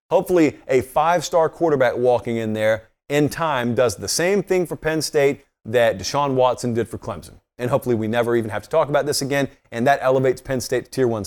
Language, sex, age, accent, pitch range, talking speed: English, male, 30-49, American, 115-140 Hz, 220 wpm